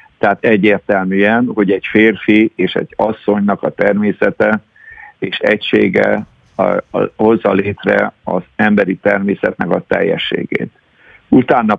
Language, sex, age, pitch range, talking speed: Hungarian, male, 60-79, 105-115 Hz, 95 wpm